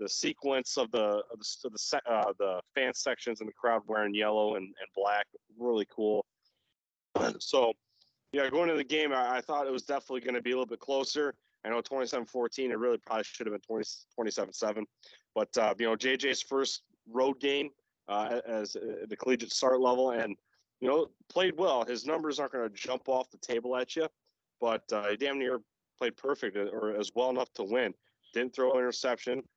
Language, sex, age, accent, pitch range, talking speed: English, male, 30-49, American, 110-130 Hz, 205 wpm